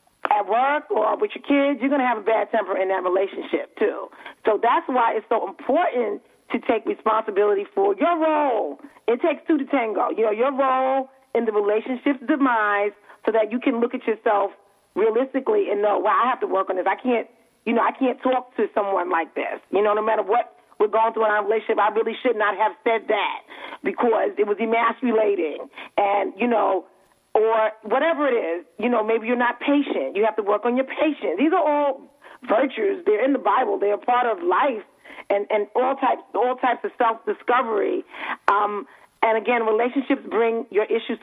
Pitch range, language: 210-290 Hz, English